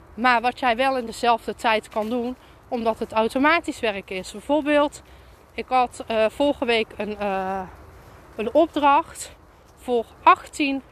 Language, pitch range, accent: Dutch, 215-275 Hz, Dutch